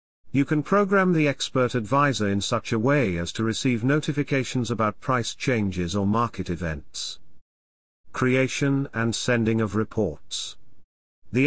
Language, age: English, 50-69